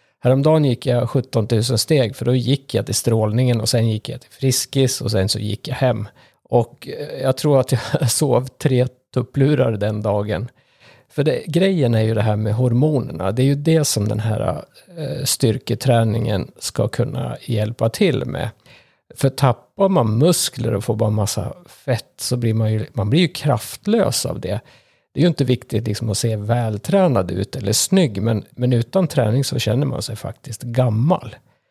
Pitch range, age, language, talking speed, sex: 110-135 Hz, 50-69, Swedish, 185 wpm, male